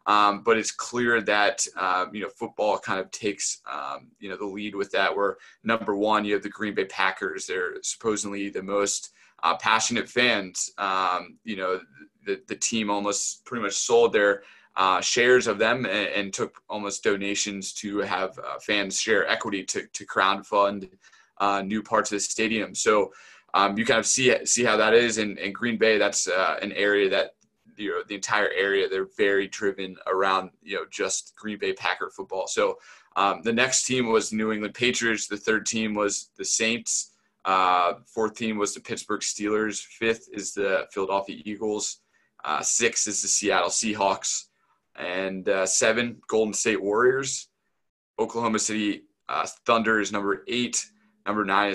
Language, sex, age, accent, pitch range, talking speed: English, male, 20-39, American, 100-120 Hz, 175 wpm